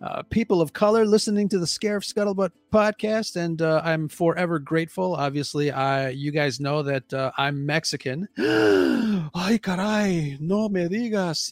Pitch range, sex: 145-195 Hz, male